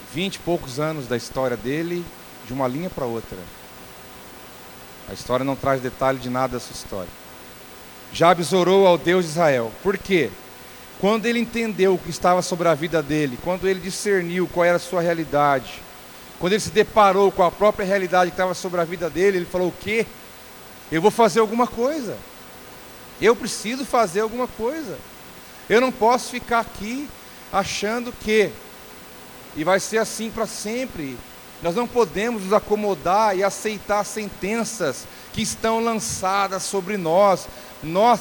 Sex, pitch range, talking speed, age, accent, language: male, 165-220 Hz, 160 wpm, 40-59, Brazilian, Portuguese